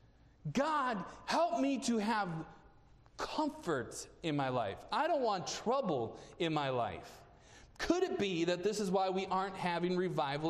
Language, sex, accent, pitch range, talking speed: English, male, American, 150-230 Hz, 155 wpm